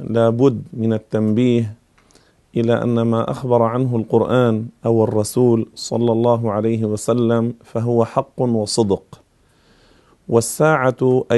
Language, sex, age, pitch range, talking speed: Arabic, male, 40-59, 115-130 Hz, 105 wpm